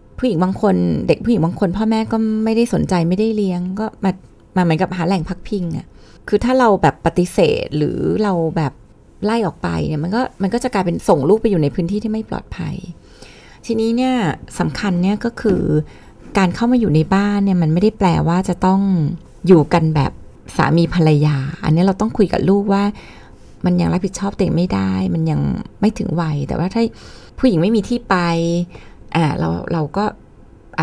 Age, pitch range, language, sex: 20-39, 165-210 Hz, Thai, female